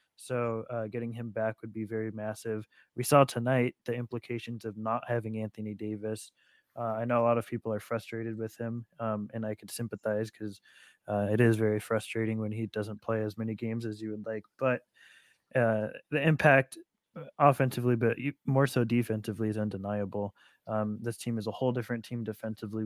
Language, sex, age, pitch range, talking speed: English, male, 20-39, 110-120 Hz, 185 wpm